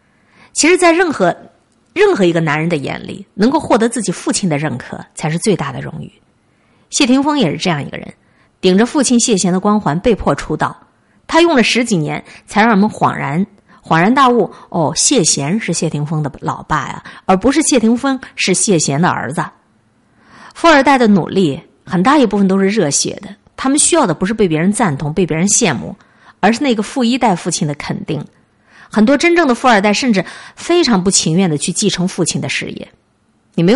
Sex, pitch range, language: female, 175-250 Hz, Chinese